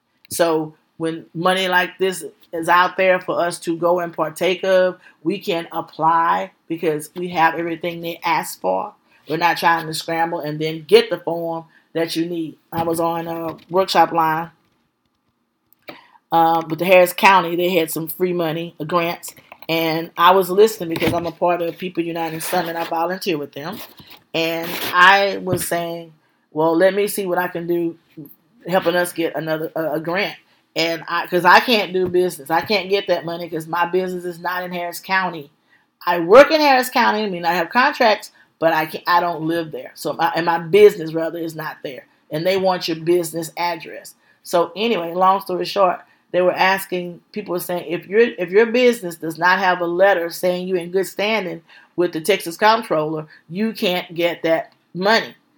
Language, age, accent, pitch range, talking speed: English, 40-59, American, 165-185 Hz, 190 wpm